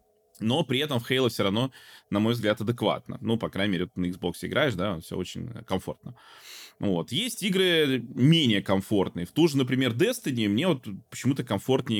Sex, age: male, 20-39